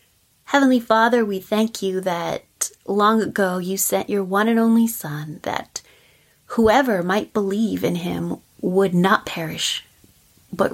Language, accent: English, American